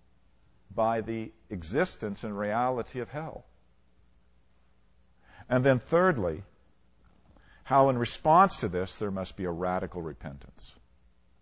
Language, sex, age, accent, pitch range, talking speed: English, male, 50-69, American, 85-125 Hz, 110 wpm